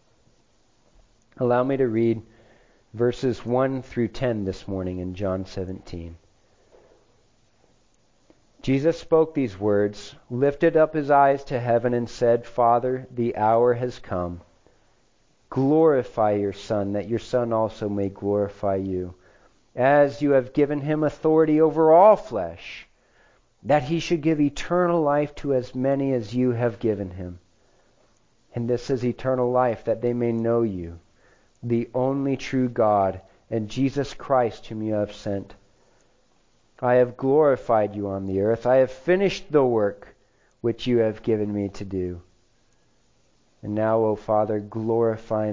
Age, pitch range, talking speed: 40-59, 105-125 Hz, 140 wpm